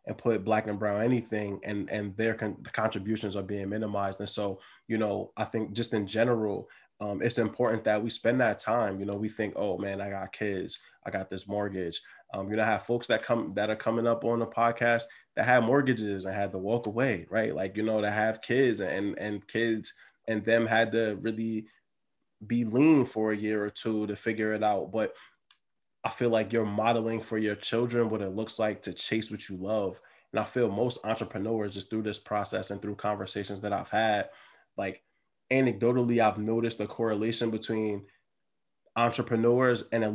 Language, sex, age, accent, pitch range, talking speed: English, male, 20-39, American, 105-115 Hz, 205 wpm